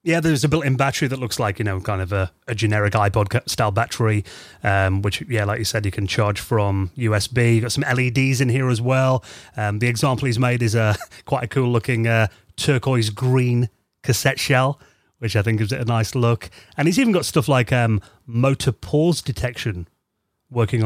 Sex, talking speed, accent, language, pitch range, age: male, 195 wpm, British, English, 105-135 Hz, 30-49